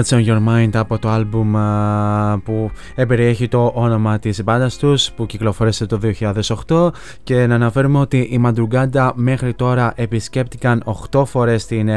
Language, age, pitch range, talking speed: Greek, 20-39, 115-130 Hz, 150 wpm